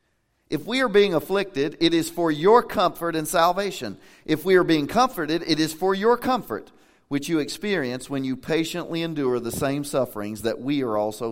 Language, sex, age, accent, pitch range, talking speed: English, male, 40-59, American, 130-175 Hz, 190 wpm